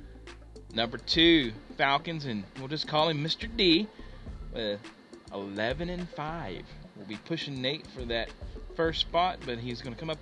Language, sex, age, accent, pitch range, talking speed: English, male, 40-59, American, 115-165 Hz, 170 wpm